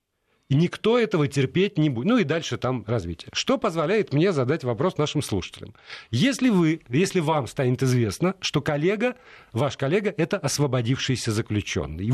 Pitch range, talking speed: 120-175 Hz, 155 wpm